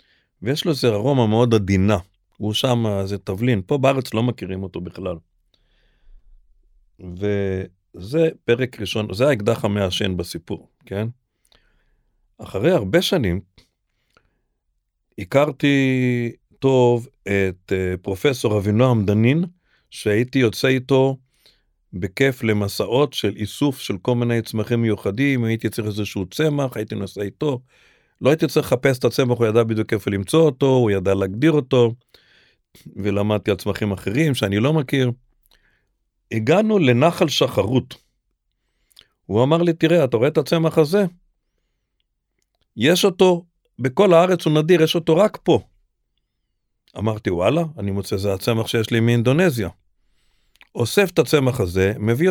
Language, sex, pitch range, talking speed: Hebrew, male, 100-140 Hz, 125 wpm